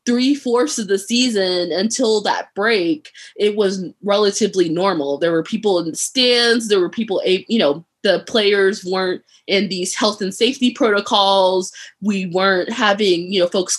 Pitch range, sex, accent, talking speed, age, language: 175-220 Hz, female, American, 160 wpm, 20-39, English